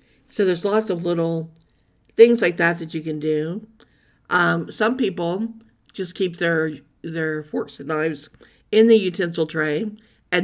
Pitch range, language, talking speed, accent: 160-185 Hz, English, 155 wpm, American